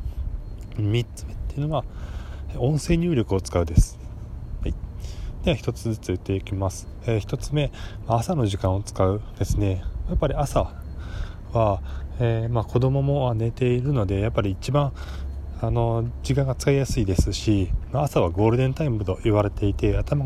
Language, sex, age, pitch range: Japanese, male, 20-39, 90-125 Hz